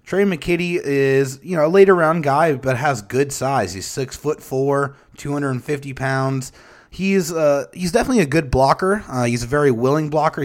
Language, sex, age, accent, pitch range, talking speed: English, male, 30-49, American, 115-145 Hz, 205 wpm